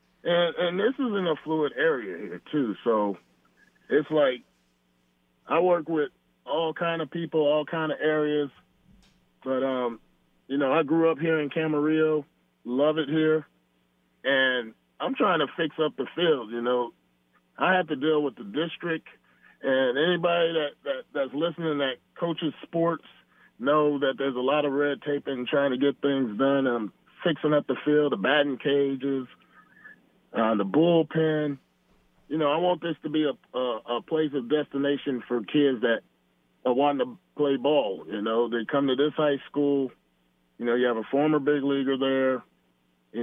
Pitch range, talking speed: 125-150 Hz, 175 wpm